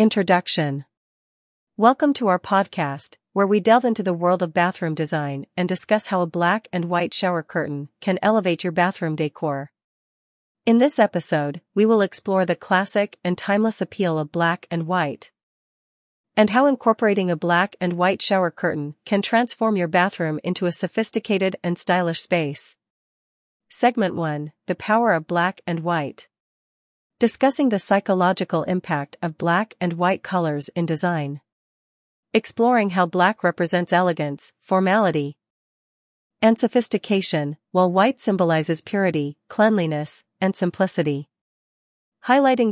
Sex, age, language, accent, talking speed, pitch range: female, 40-59, English, American, 135 wpm, 160-205 Hz